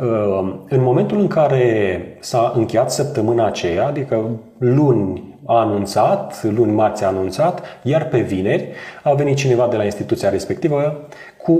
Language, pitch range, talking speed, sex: Romanian, 105-155 Hz, 140 wpm, male